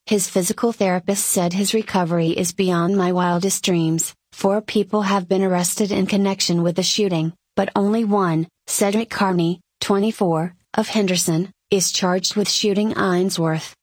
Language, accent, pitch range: English, American, 180-205 Hz